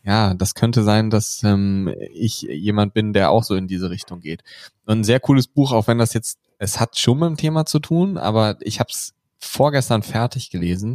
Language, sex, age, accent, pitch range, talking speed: German, male, 10-29, German, 105-130 Hz, 215 wpm